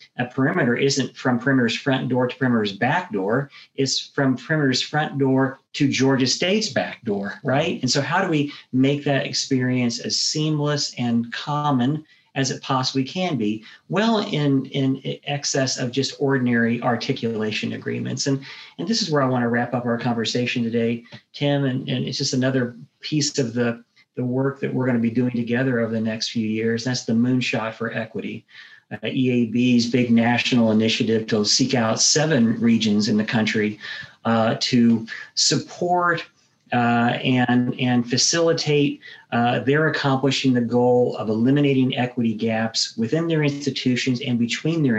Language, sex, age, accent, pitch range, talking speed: English, male, 40-59, American, 115-140 Hz, 165 wpm